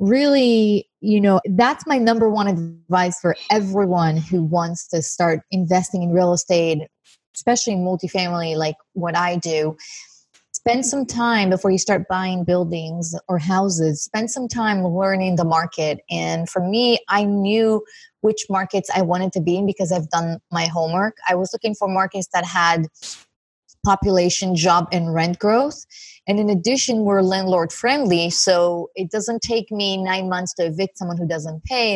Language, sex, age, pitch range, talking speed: English, female, 20-39, 175-205 Hz, 165 wpm